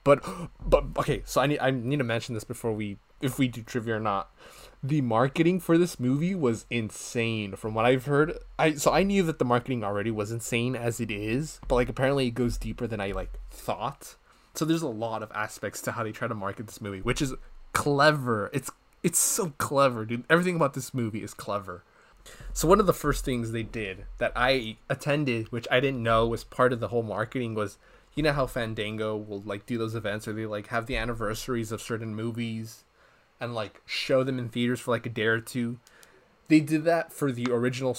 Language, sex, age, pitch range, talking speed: English, male, 20-39, 110-140 Hz, 220 wpm